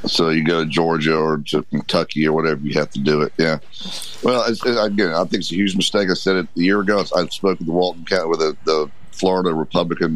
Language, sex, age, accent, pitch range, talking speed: English, male, 50-69, American, 80-100 Hz, 260 wpm